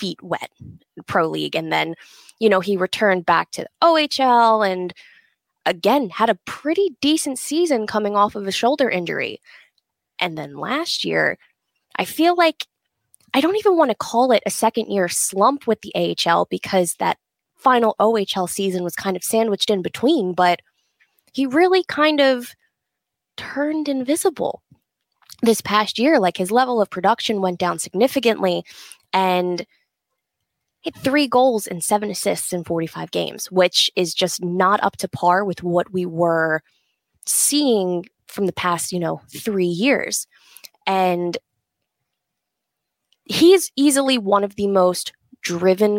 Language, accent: English, American